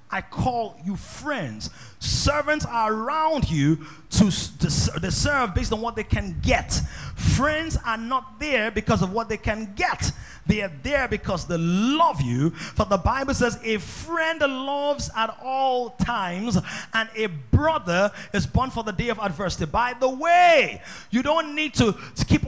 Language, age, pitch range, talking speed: English, 30-49, 155-240 Hz, 170 wpm